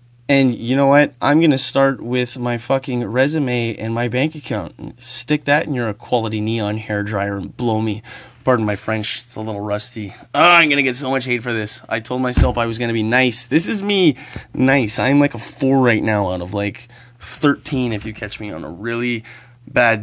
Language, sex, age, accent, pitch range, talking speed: English, male, 20-39, American, 110-135 Hz, 220 wpm